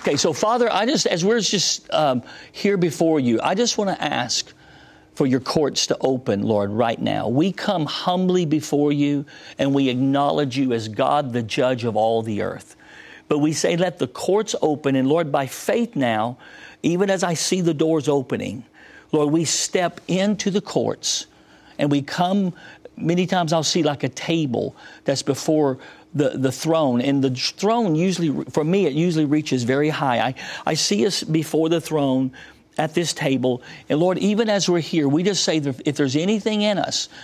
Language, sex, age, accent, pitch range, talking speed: English, male, 50-69, American, 140-180 Hz, 190 wpm